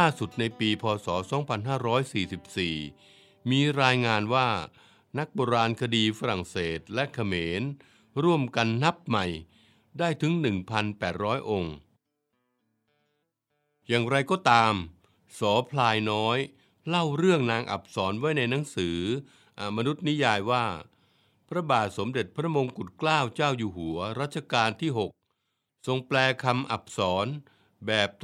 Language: Thai